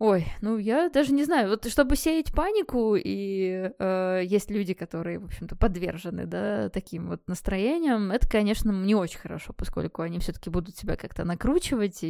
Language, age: Russian, 20-39